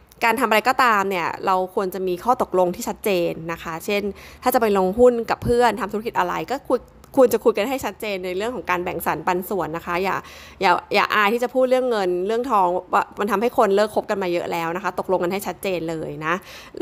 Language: Thai